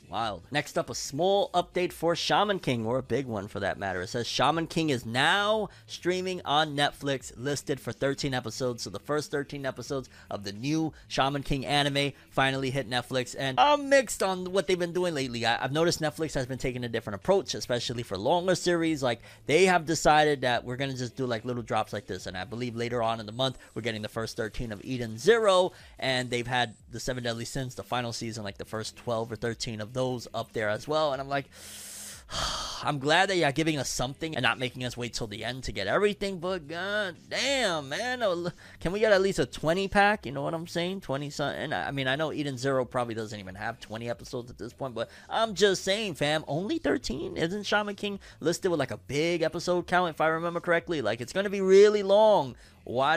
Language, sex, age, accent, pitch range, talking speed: English, male, 30-49, American, 120-175 Hz, 225 wpm